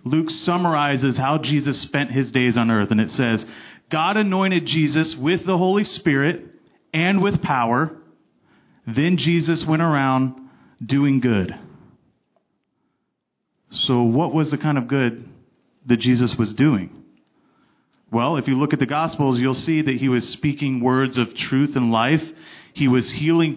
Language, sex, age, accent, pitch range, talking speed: English, male, 30-49, American, 130-165 Hz, 155 wpm